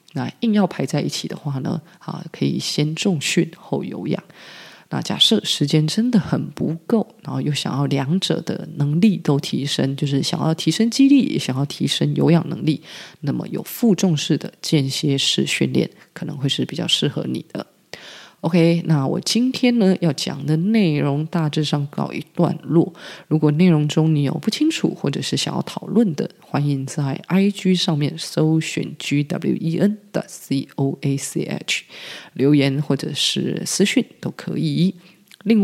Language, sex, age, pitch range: Chinese, female, 20-39, 145-185 Hz